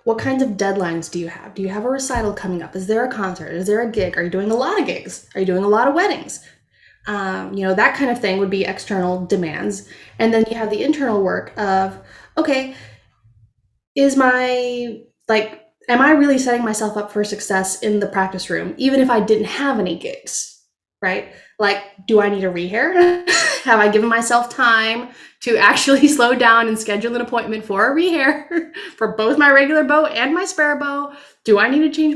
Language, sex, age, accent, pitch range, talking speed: English, female, 20-39, American, 200-255 Hz, 215 wpm